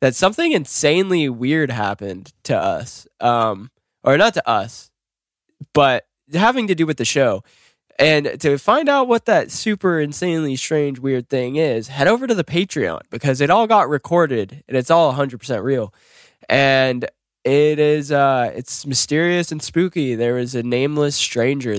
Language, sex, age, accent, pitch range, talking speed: English, male, 10-29, American, 110-140 Hz, 160 wpm